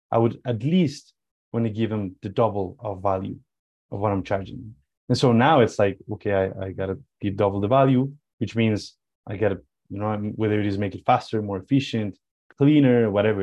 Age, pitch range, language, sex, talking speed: 20-39, 100-125 Hz, English, male, 210 wpm